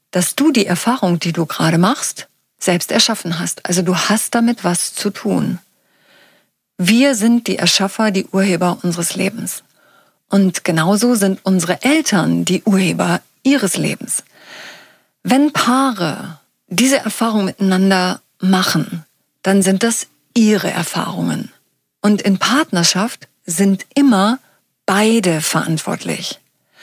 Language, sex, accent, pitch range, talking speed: German, female, German, 175-210 Hz, 120 wpm